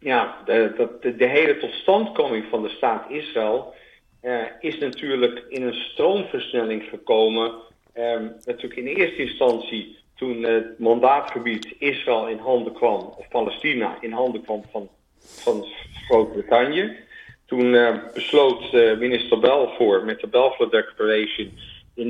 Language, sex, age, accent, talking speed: Dutch, male, 50-69, Dutch, 130 wpm